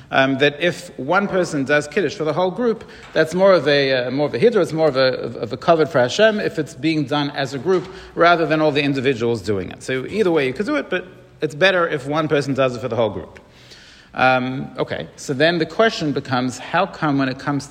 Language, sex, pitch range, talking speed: English, male, 130-165 Hz, 245 wpm